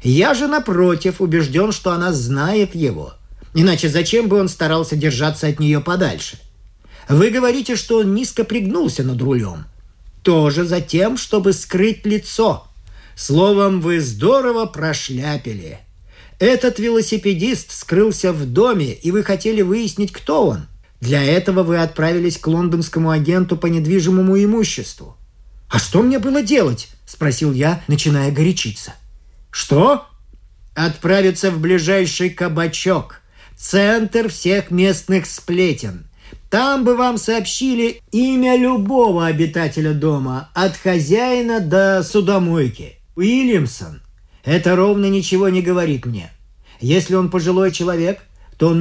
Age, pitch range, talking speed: 50-69, 145-195 Hz, 120 wpm